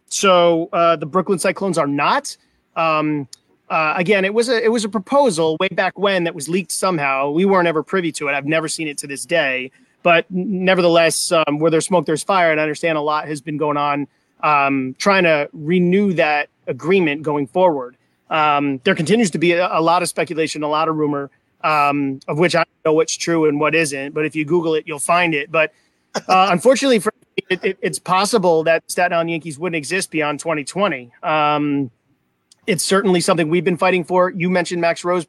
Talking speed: 210 wpm